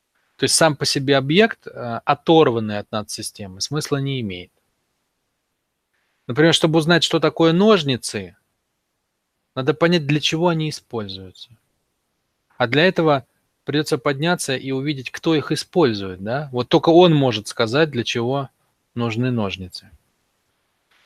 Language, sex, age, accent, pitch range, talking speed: Russian, male, 20-39, native, 110-150 Hz, 125 wpm